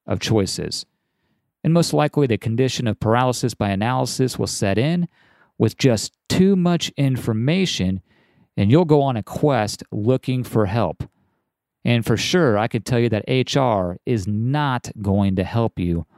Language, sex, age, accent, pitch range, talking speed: English, male, 40-59, American, 105-140 Hz, 160 wpm